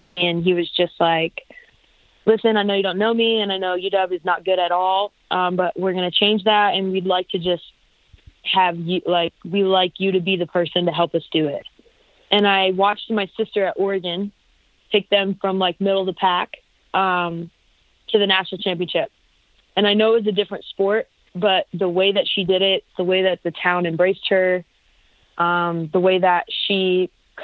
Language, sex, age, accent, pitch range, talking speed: English, female, 20-39, American, 175-195 Hz, 210 wpm